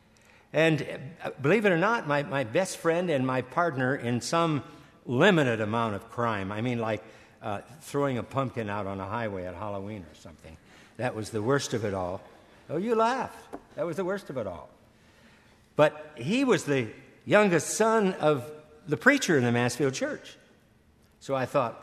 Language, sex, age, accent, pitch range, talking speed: English, male, 60-79, American, 110-150 Hz, 180 wpm